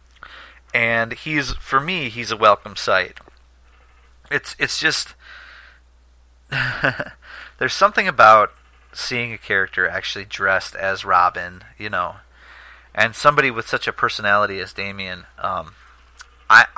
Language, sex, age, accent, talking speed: English, male, 30-49, American, 120 wpm